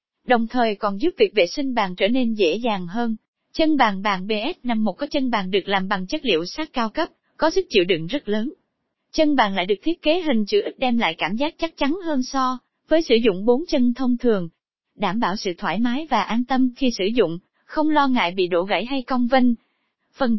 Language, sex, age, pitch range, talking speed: Vietnamese, female, 20-39, 205-290 Hz, 235 wpm